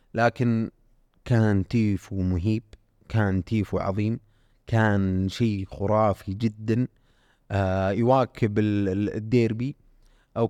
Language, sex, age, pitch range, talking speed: Arabic, male, 30-49, 105-120 Hz, 95 wpm